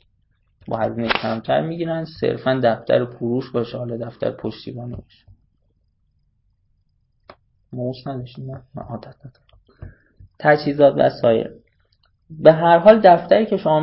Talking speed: 115 wpm